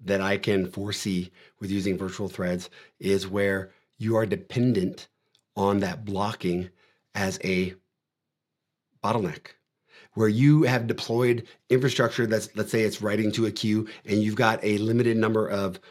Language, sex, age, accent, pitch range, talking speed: English, male, 30-49, American, 100-130 Hz, 145 wpm